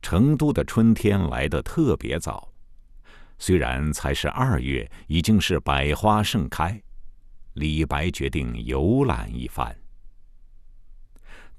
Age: 50-69